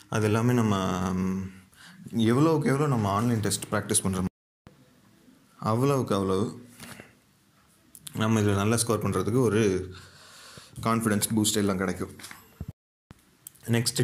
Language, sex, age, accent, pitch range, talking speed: Tamil, male, 30-49, native, 100-125 Hz, 95 wpm